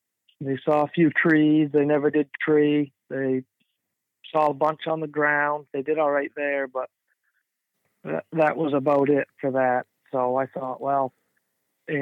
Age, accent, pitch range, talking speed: 50-69, American, 130-160 Hz, 170 wpm